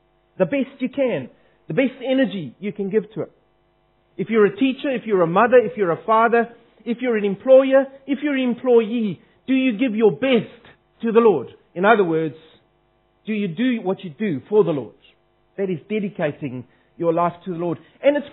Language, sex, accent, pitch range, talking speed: English, male, South African, 175-255 Hz, 205 wpm